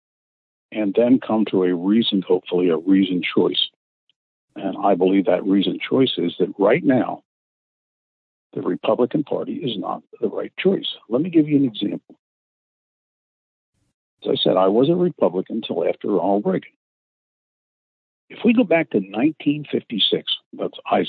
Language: English